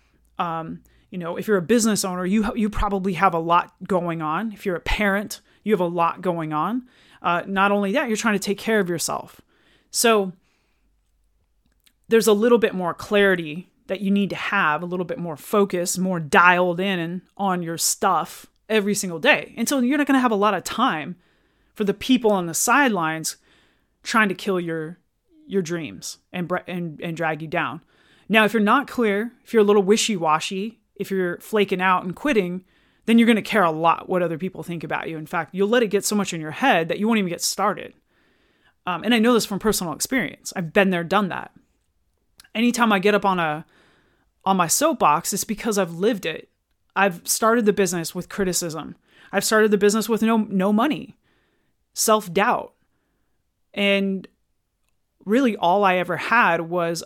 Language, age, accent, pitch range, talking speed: English, 30-49, American, 170-215 Hz, 195 wpm